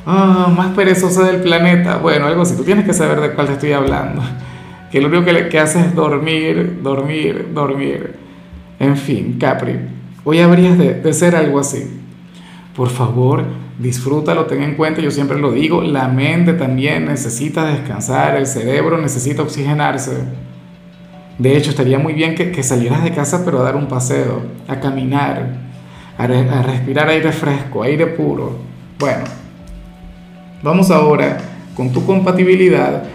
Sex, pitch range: male, 140-175 Hz